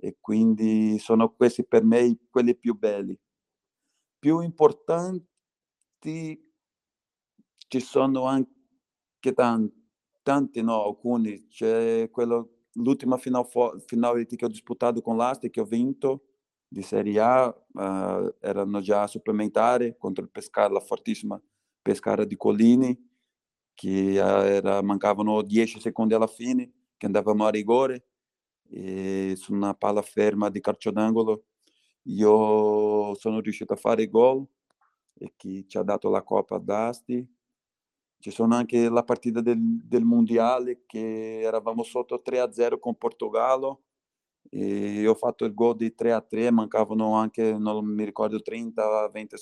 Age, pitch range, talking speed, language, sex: 40-59, 105-125 Hz, 130 wpm, Italian, male